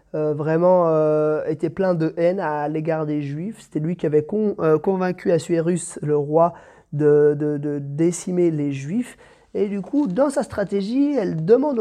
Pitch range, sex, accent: 155-190 Hz, male, French